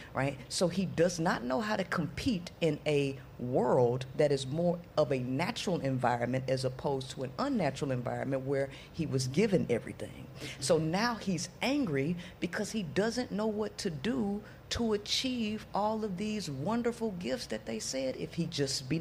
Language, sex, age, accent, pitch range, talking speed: English, female, 50-69, American, 135-185 Hz, 175 wpm